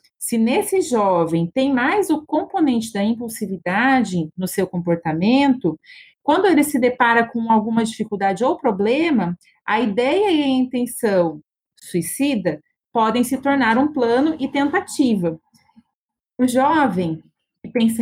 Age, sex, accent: 30-49, female, Brazilian